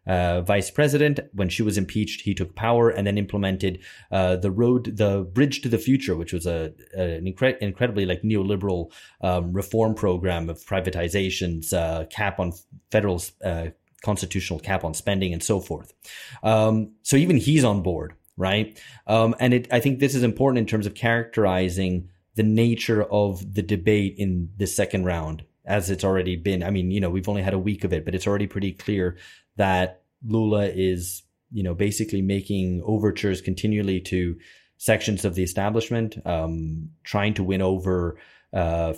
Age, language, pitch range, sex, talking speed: 30-49, English, 90-110 Hz, male, 170 wpm